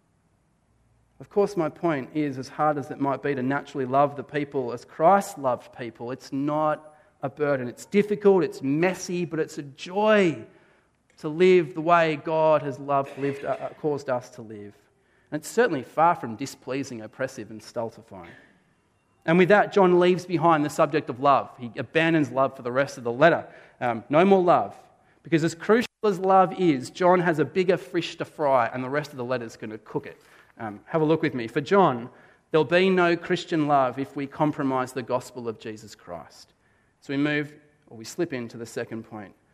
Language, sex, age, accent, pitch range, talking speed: English, male, 30-49, Australian, 125-165 Hz, 200 wpm